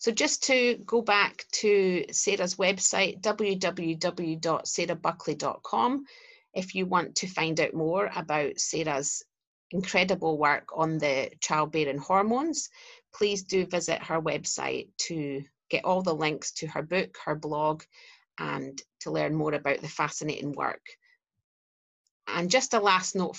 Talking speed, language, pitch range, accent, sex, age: 135 wpm, English, 155-200 Hz, British, female, 30-49